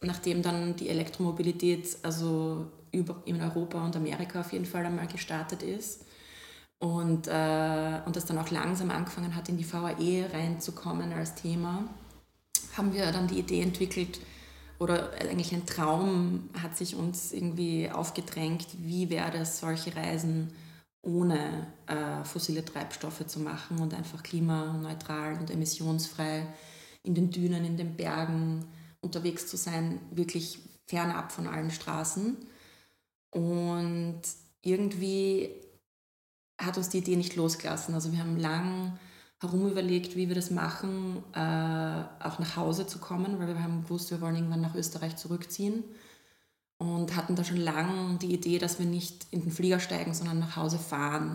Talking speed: 145 wpm